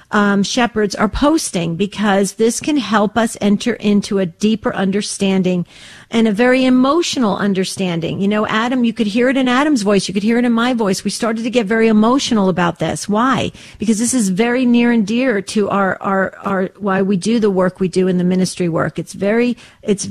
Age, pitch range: 50-69, 195-240 Hz